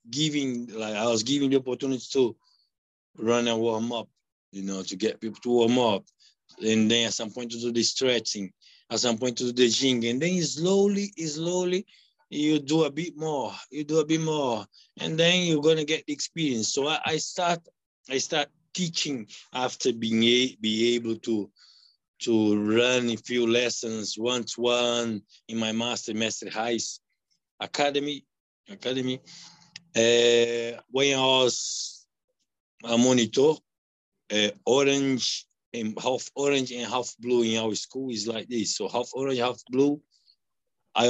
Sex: male